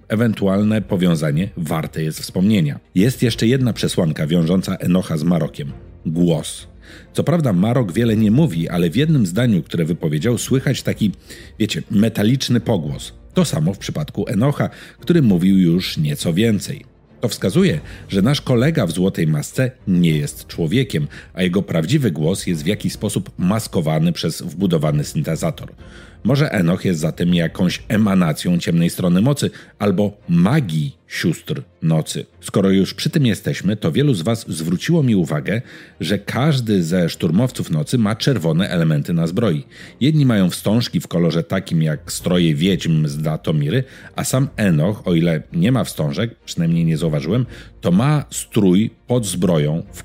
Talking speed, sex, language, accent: 150 wpm, male, Polish, native